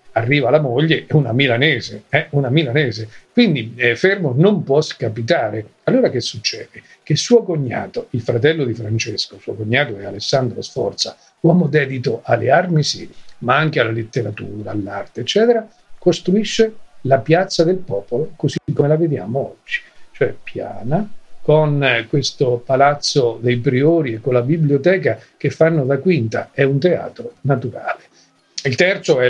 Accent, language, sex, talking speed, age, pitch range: native, Italian, male, 145 wpm, 50-69, 120-155 Hz